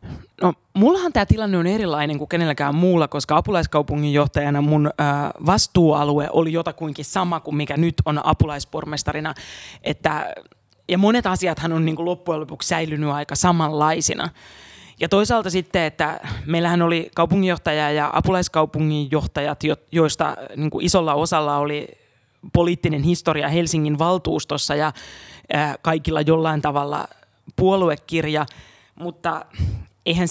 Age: 20-39